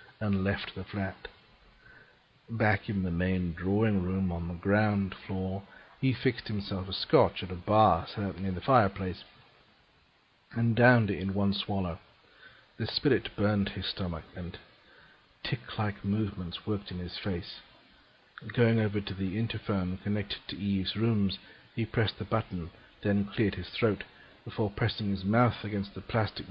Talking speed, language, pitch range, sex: 150 wpm, English, 95-115 Hz, male